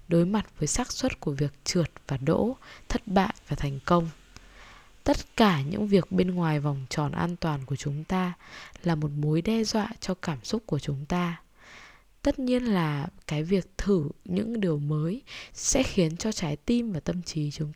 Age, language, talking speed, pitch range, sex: 10-29, Vietnamese, 195 wpm, 150-205 Hz, female